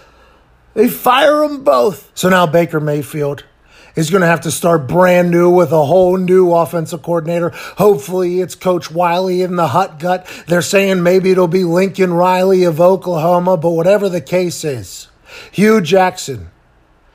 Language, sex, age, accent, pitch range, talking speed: English, male, 30-49, American, 150-185 Hz, 160 wpm